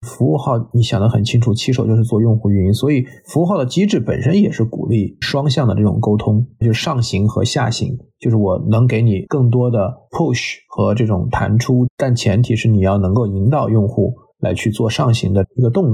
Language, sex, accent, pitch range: Chinese, male, native, 110-135 Hz